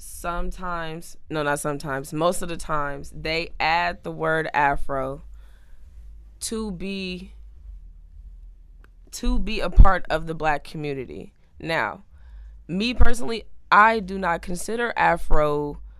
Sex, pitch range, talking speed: female, 115-170 Hz, 115 wpm